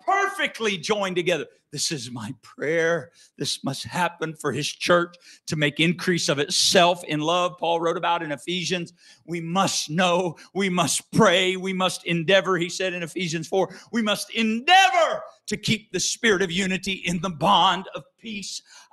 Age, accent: 50-69, American